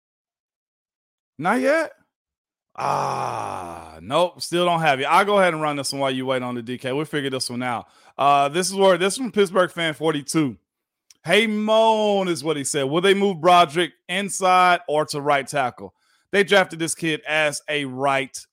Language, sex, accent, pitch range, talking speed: English, male, American, 140-180 Hz, 185 wpm